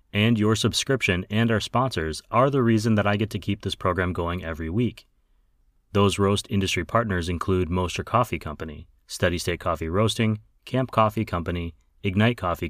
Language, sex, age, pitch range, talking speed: English, male, 30-49, 85-110 Hz, 170 wpm